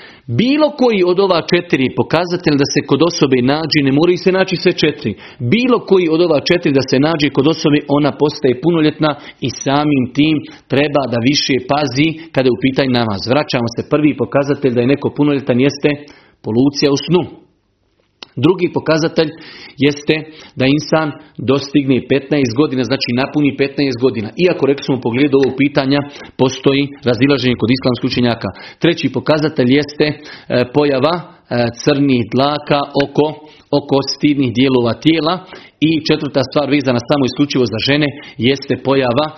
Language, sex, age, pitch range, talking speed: Croatian, male, 40-59, 130-155 Hz, 145 wpm